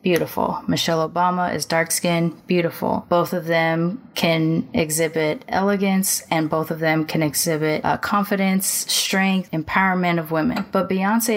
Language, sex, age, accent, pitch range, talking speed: English, female, 10-29, American, 155-195 Hz, 135 wpm